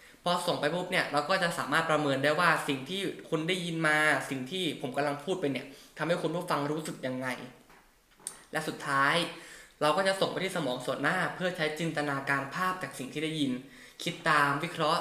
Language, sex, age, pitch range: Thai, male, 10-29, 140-175 Hz